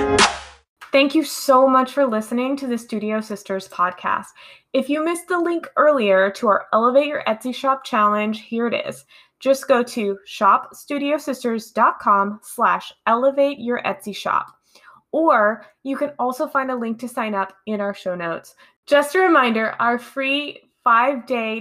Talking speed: 145 wpm